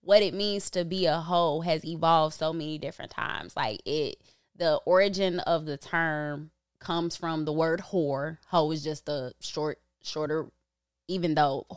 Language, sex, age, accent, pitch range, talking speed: English, female, 20-39, American, 150-190 Hz, 170 wpm